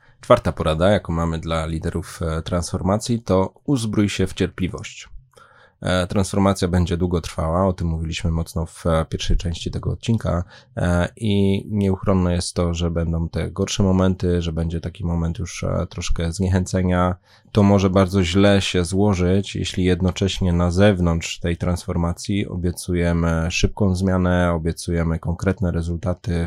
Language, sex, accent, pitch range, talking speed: Polish, male, native, 85-100 Hz, 135 wpm